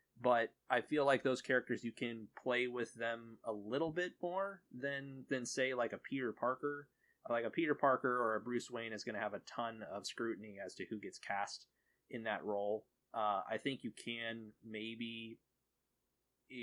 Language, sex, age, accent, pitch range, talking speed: English, male, 20-39, American, 105-125 Hz, 190 wpm